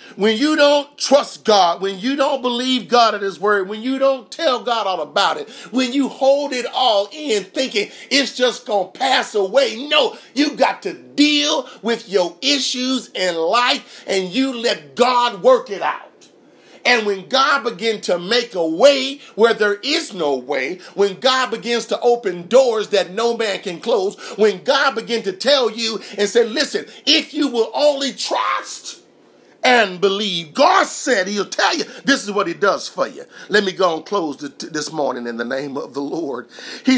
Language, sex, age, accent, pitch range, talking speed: English, male, 40-59, American, 200-260 Hz, 190 wpm